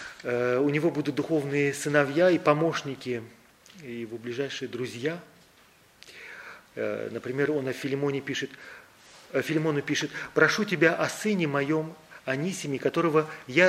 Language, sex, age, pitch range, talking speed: Russian, male, 40-59, 125-165 Hz, 120 wpm